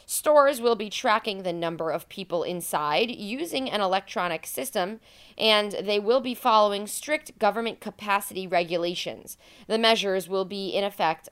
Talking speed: 150 wpm